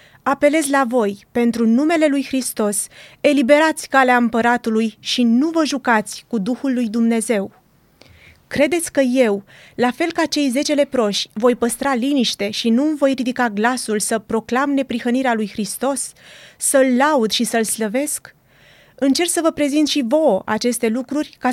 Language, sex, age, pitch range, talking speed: Romanian, female, 30-49, 225-275 Hz, 150 wpm